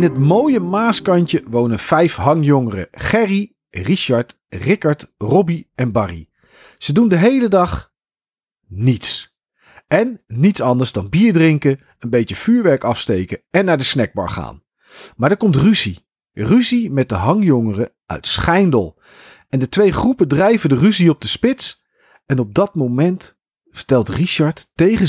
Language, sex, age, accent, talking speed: Dutch, male, 40-59, Dutch, 145 wpm